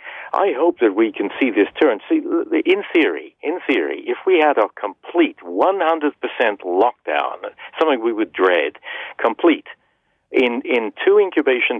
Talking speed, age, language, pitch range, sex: 145 wpm, 60-79, English, 345-445 Hz, male